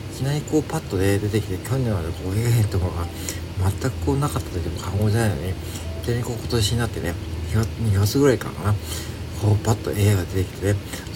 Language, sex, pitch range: Japanese, male, 95-115 Hz